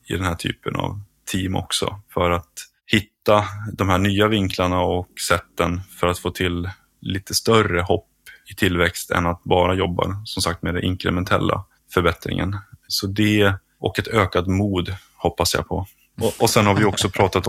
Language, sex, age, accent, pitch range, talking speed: Swedish, male, 20-39, native, 90-100 Hz, 175 wpm